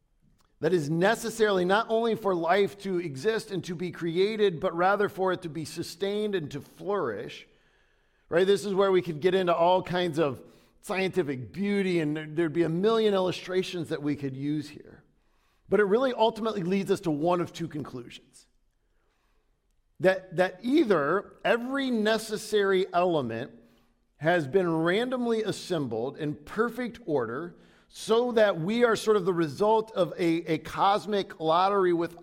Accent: American